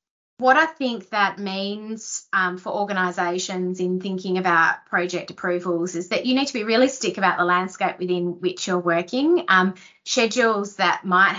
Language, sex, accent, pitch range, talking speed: English, female, Australian, 175-195 Hz, 165 wpm